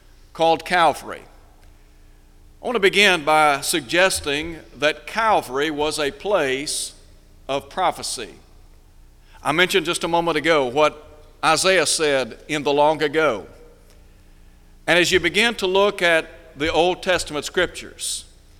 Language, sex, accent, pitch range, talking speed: English, male, American, 145-185 Hz, 125 wpm